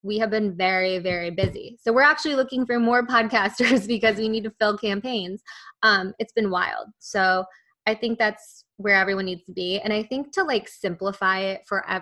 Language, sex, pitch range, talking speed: English, female, 195-230 Hz, 200 wpm